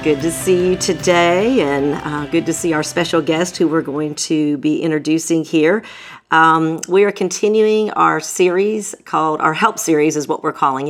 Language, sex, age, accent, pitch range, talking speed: English, female, 40-59, American, 150-185 Hz, 185 wpm